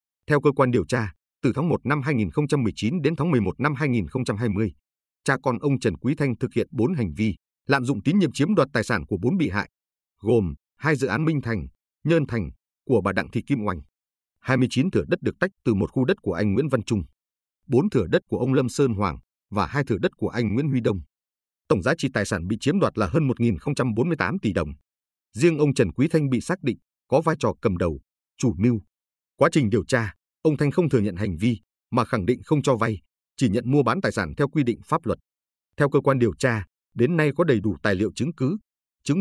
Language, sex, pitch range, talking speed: Vietnamese, male, 85-135 Hz, 235 wpm